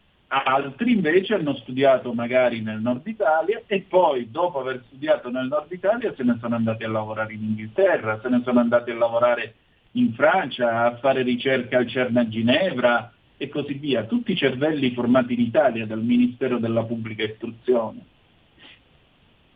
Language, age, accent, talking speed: Italian, 50-69, native, 165 wpm